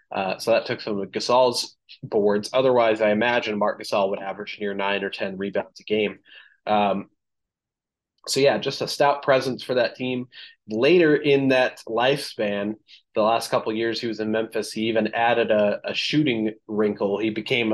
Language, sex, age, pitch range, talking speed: English, male, 20-39, 105-120 Hz, 185 wpm